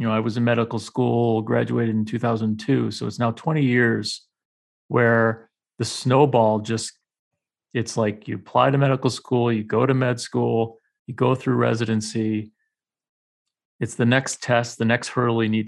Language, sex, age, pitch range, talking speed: English, male, 30-49, 115-140 Hz, 170 wpm